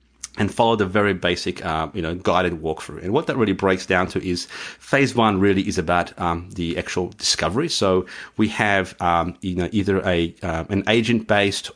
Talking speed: 200 wpm